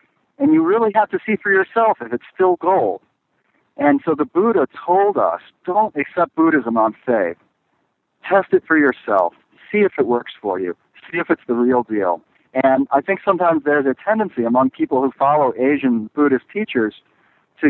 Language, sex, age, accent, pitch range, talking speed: English, male, 50-69, American, 130-180 Hz, 185 wpm